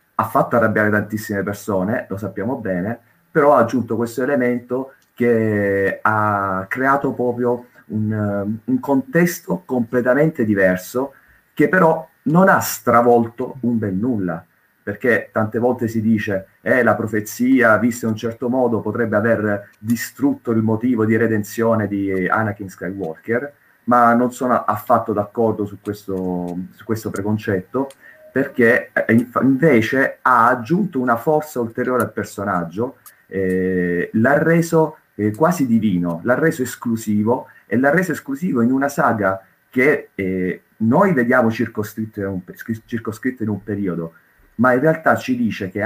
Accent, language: native, Italian